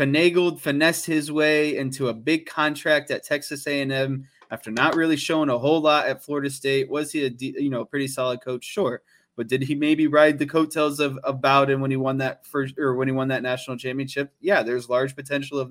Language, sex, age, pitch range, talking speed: English, male, 20-39, 135-160 Hz, 220 wpm